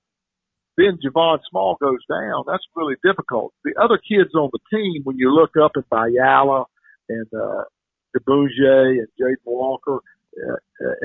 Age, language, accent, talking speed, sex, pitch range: 50-69, English, American, 145 wpm, male, 140-195 Hz